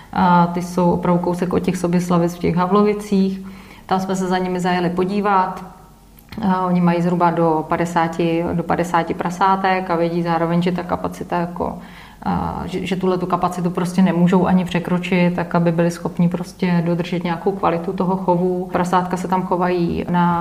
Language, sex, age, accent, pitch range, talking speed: Czech, female, 30-49, native, 180-190 Hz, 160 wpm